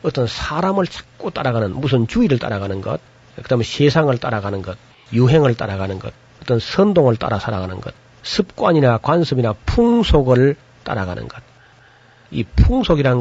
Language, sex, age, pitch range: Korean, male, 40-59, 110-145 Hz